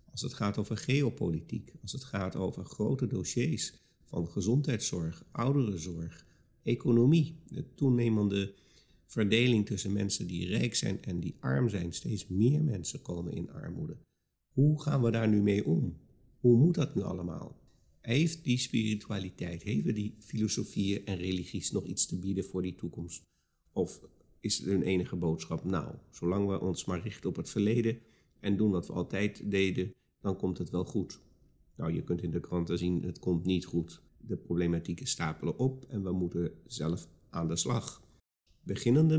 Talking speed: 165 wpm